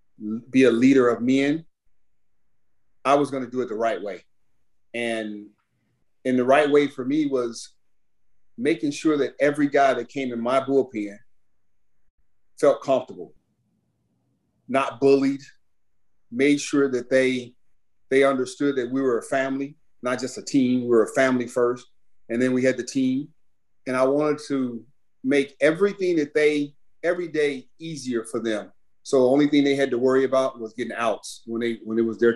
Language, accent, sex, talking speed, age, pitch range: English, American, male, 170 wpm, 40-59, 120-140 Hz